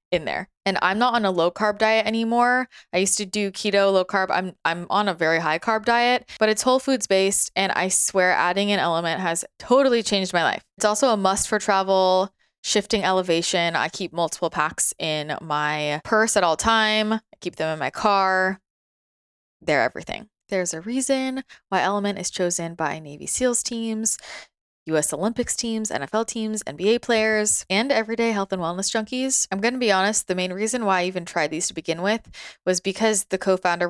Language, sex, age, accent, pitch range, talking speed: English, female, 20-39, American, 165-215 Hz, 200 wpm